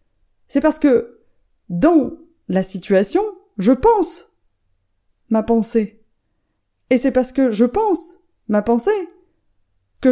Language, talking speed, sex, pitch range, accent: French, 115 wpm, female, 195-255 Hz, French